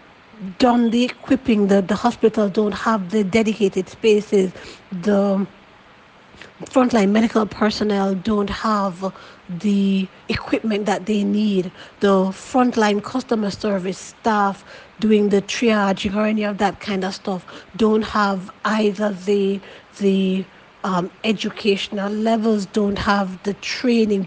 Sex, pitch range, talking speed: female, 195-220 Hz, 120 wpm